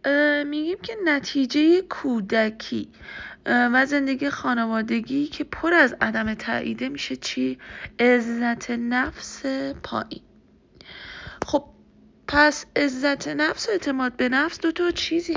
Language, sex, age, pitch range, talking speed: Persian, female, 30-49, 210-300 Hz, 105 wpm